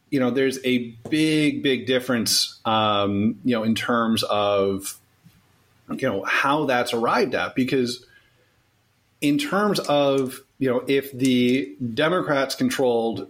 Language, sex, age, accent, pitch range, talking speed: English, male, 30-49, American, 110-140 Hz, 130 wpm